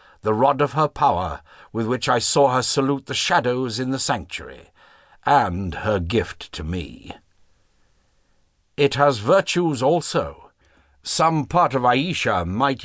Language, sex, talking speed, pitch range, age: English, male, 140 wpm, 85-145 Hz, 60-79